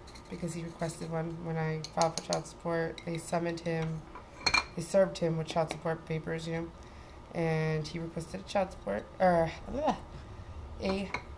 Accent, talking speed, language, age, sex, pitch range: American, 160 wpm, English, 20-39, female, 155-180 Hz